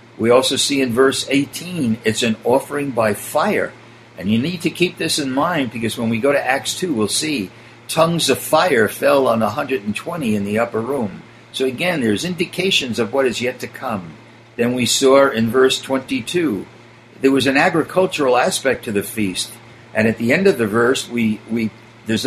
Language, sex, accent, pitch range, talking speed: English, male, American, 115-150 Hz, 195 wpm